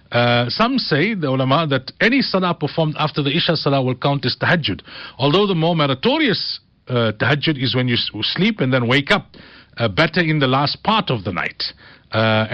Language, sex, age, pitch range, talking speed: English, male, 50-69, 125-160 Hz, 195 wpm